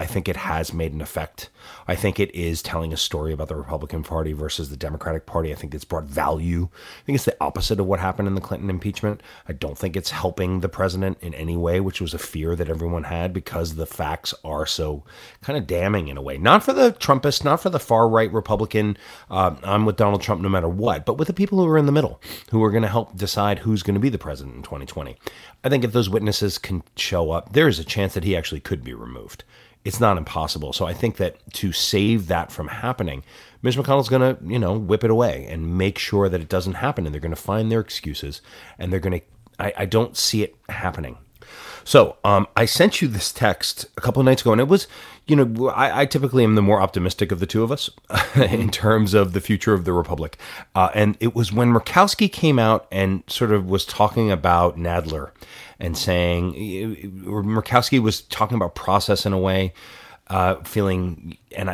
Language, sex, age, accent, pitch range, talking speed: English, male, 30-49, American, 85-110 Hz, 225 wpm